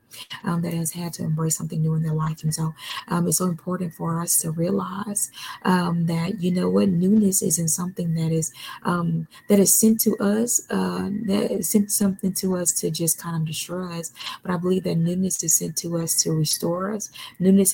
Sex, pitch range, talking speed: female, 170-205 Hz, 215 wpm